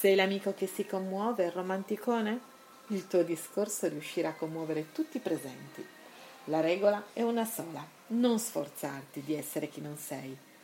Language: Italian